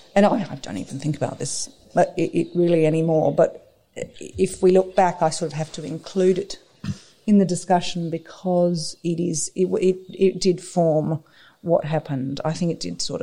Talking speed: 190 wpm